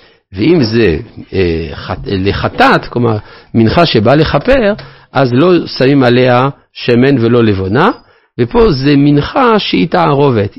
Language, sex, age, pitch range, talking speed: Hebrew, male, 50-69, 110-150 Hz, 110 wpm